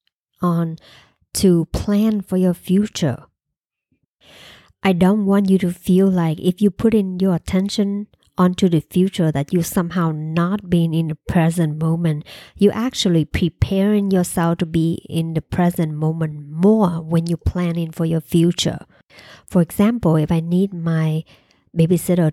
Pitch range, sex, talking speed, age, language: 165-195 Hz, male, 150 wpm, 50-69, English